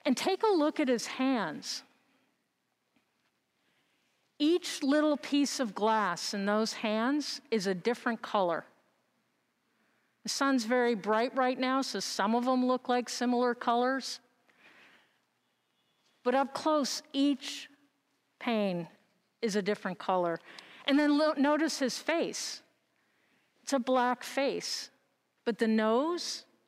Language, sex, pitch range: English, female, 215-270 Hz